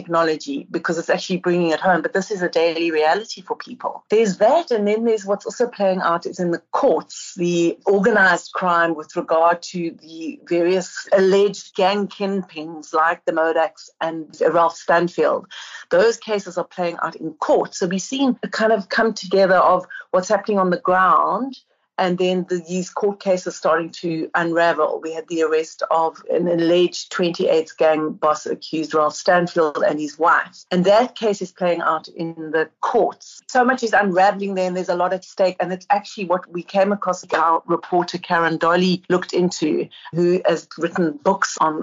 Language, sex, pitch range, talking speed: English, female, 165-195 Hz, 185 wpm